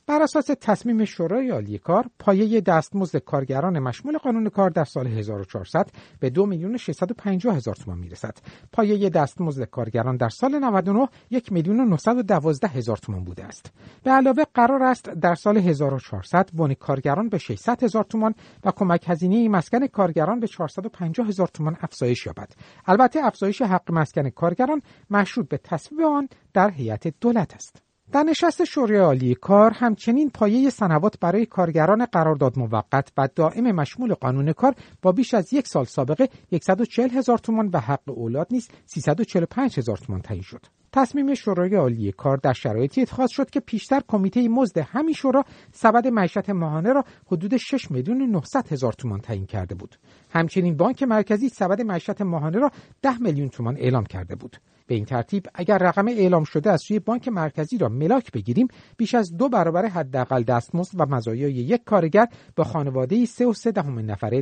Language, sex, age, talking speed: Persian, male, 50-69, 160 wpm